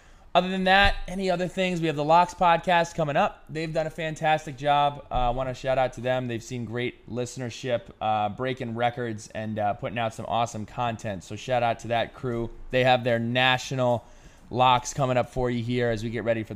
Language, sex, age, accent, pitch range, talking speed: English, male, 20-39, American, 110-135 Hz, 220 wpm